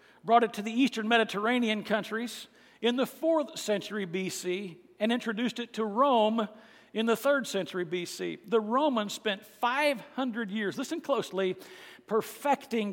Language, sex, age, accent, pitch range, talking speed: English, male, 60-79, American, 195-235 Hz, 140 wpm